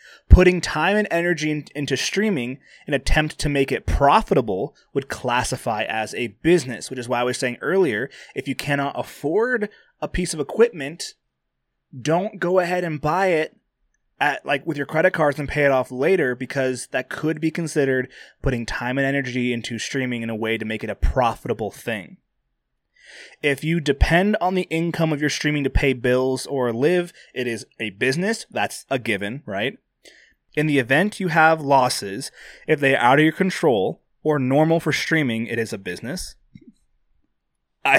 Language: English